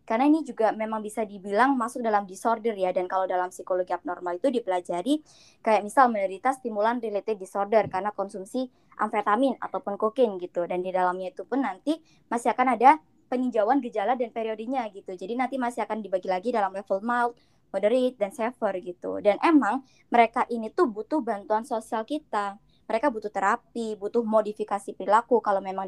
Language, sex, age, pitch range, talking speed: Indonesian, male, 20-39, 200-250 Hz, 170 wpm